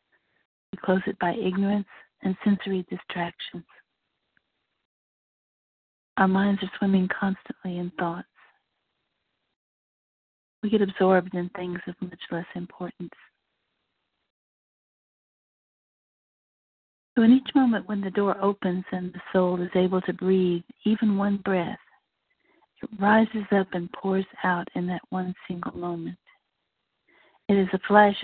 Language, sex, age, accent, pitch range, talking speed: English, female, 50-69, American, 180-200 Hz, 120 wpm